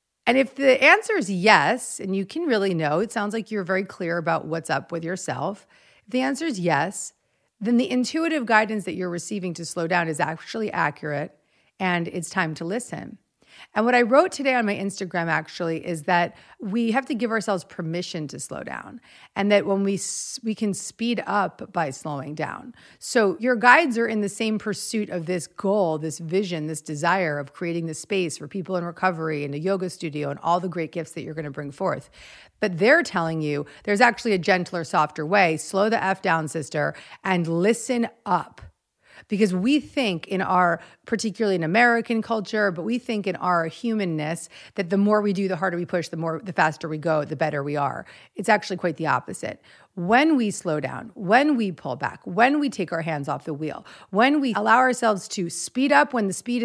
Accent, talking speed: American, 210 wpm